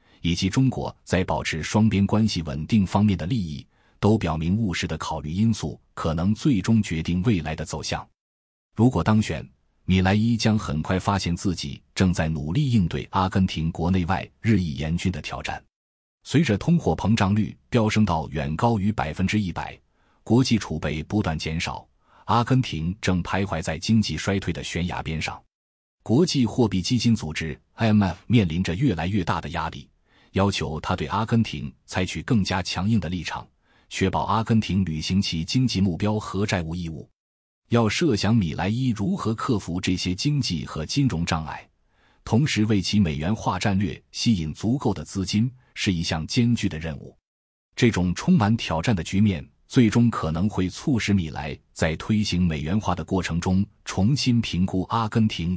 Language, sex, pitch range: Chinese, male, 80-110 Hz